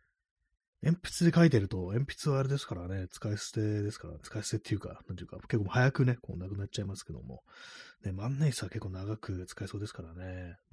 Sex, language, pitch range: male, Japanese, 85-110 Hz